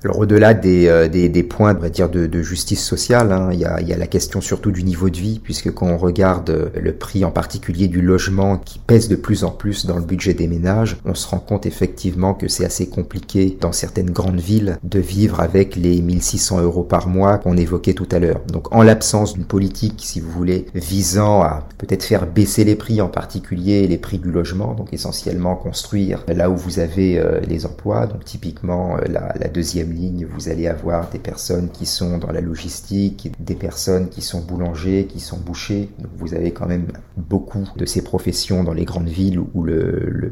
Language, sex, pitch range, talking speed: French, male, 90-100 Hz, 210 wpm